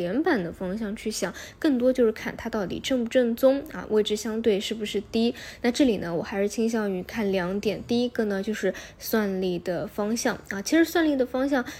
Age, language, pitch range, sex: 10-29, Chinese, 200-245 Hz, female